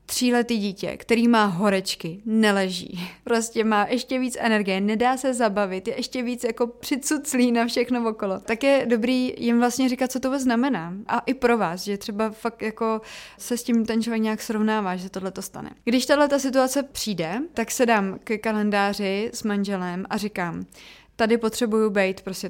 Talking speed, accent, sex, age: 185 wpm, native, female, 20-39